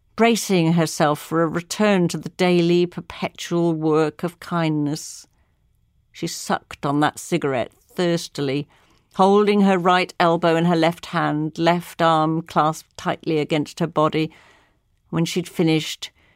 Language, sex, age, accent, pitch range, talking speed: English, female, 50-69, British, 155-190 Hz, 130 wpm